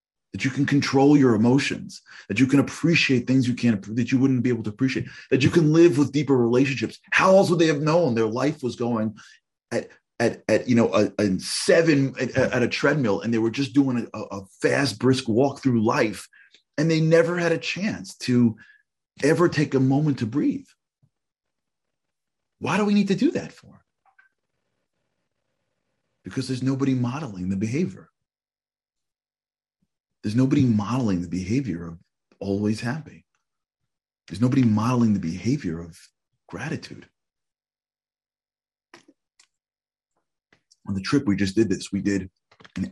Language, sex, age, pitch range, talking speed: English, male, 40-59, 105-140 Hz, 160 wpm